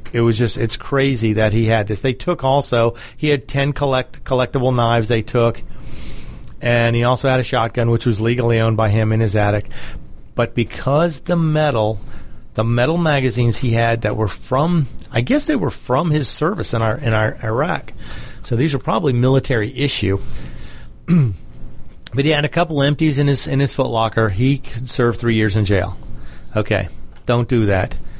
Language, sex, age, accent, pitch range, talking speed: English, male, 40-59, American, 110-140 Hz, 185 wpm